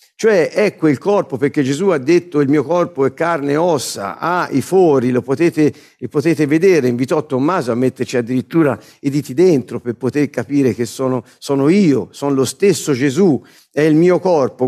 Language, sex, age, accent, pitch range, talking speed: Italian, male, 50-69, native, 130-180 Hz, 190 wpm